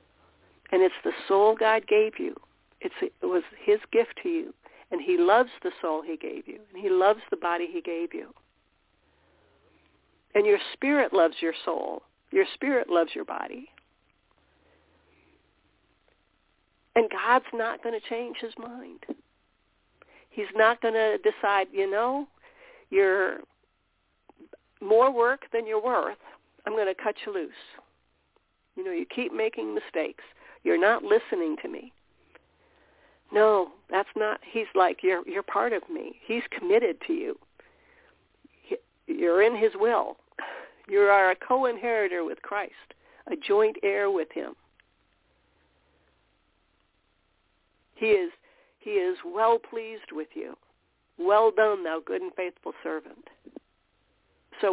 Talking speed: 135 wpm